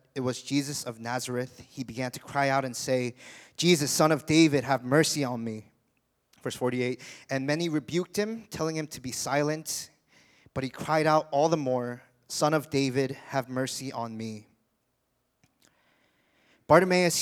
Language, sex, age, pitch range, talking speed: English, male, 20-39, 125-150 Hz, 160 wpm